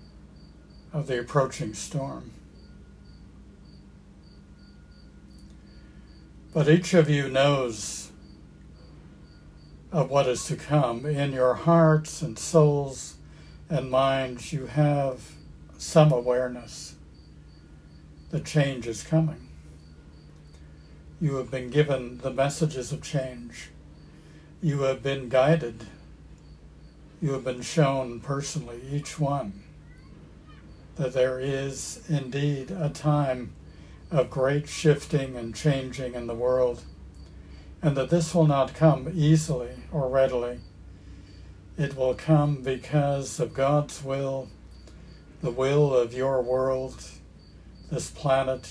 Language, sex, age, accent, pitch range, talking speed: English, male, 60-79, American, 90-140 Hz, 105 wpm